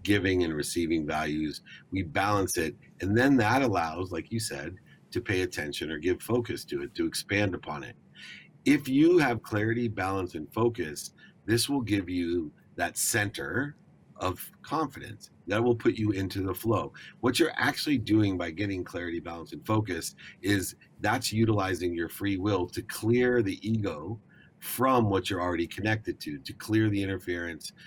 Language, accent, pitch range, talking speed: English, American, 85-115 Hz, 170 wpm